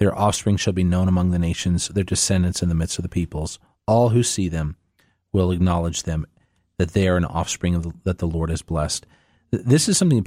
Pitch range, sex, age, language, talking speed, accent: 90-110 Hz, male, 30-49, English, 230 wpm, American